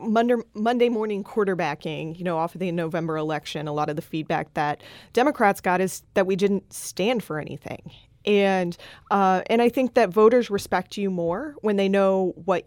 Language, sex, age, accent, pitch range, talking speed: English, female, 20-39, American, 145-205 Hz, 185 wpm